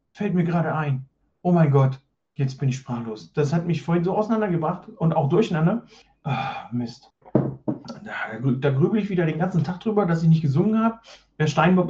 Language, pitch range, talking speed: German, 120-160 Hz, 200 wpm